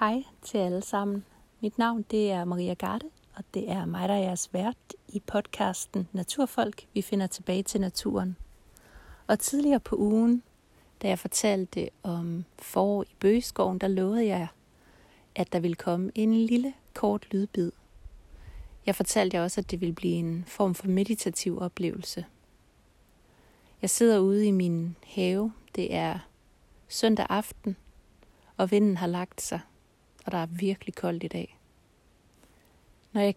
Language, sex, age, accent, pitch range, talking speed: Danish, female, 30-49, native, 175-210 Hz, 150 wpm